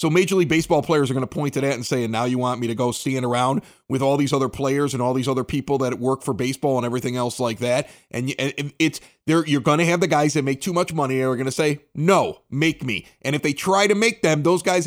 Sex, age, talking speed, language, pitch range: male, 30-49, 285 wpm, English, 135-175 Hz